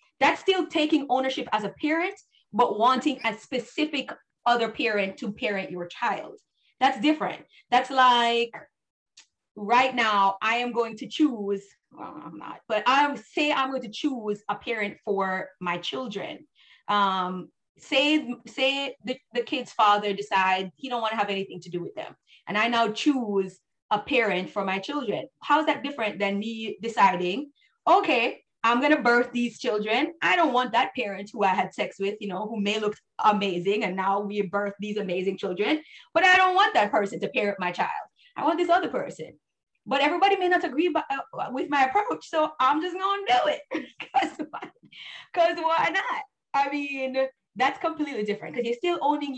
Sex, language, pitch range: female, English, 205-295 Hz